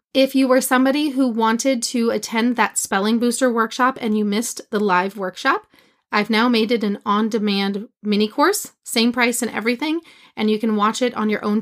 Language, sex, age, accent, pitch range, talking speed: English, female, 30-49, American, 210-255 Hz, 195 wpm